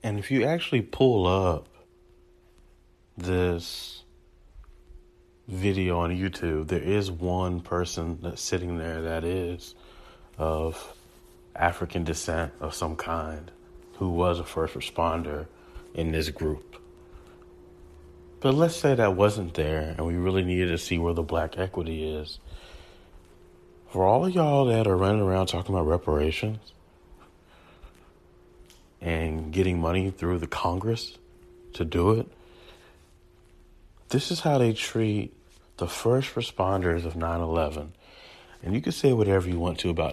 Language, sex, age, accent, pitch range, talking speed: English, male, 30-49, American, 80-95 Hz, 135 wpm